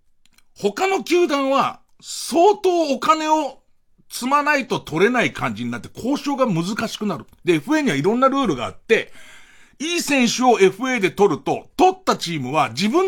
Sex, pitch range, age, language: male, 175-275 Hz, 50-69, Japanese